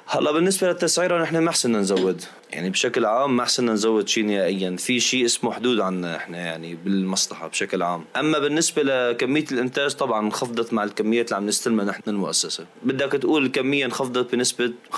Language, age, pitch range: Arabic, 20-39, 105-150 Hz